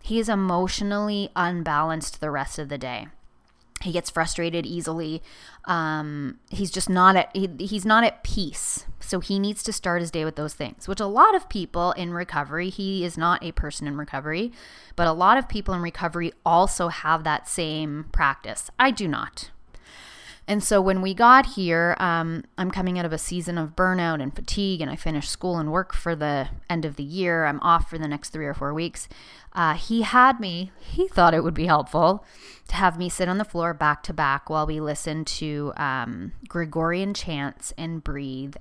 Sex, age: female, 20-39